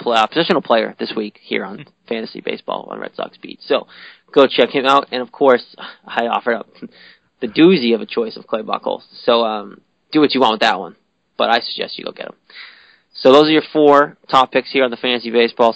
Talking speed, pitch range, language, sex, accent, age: 225 wpm, 115-140 Hz, English, male, American, 20-39